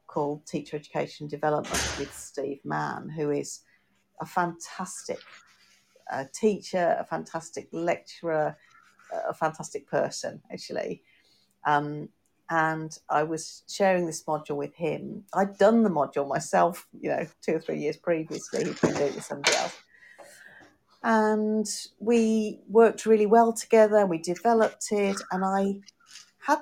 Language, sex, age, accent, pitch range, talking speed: English, female, 50-69, British, 155-215 Hz, 140 wpm